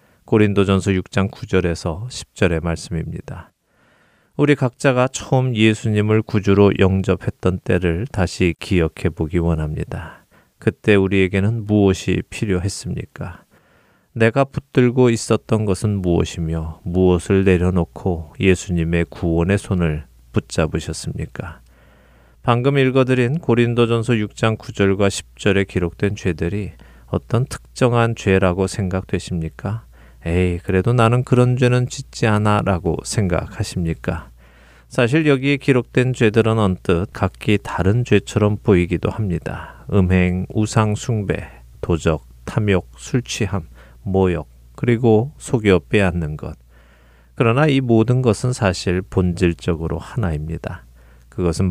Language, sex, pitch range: Korean, male, 85-110 Hz